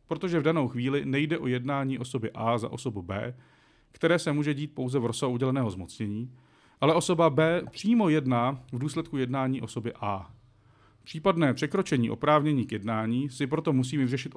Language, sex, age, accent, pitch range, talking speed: Czech, male, 40-59, native, 115-160 Hz, 165 wpm